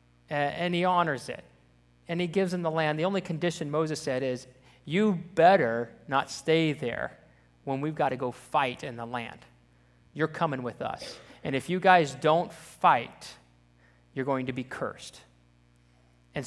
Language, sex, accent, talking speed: English, male, American, 170 wpm